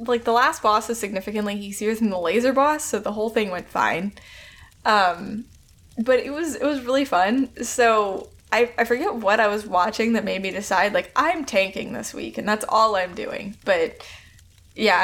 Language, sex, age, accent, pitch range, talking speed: English, female, 10-29, American, 195-245 Hz, 195 wpm